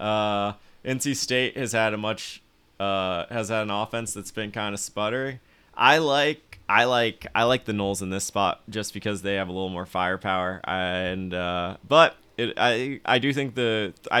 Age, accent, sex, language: 20-39, American, male, English